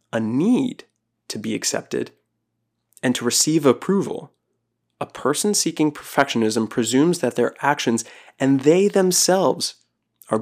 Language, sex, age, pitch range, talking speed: English, male, 20-39, 125-155 Hz, 115 wpm